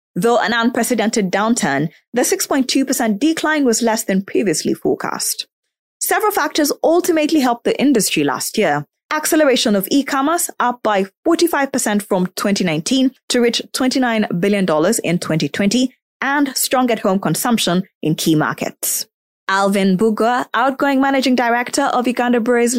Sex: female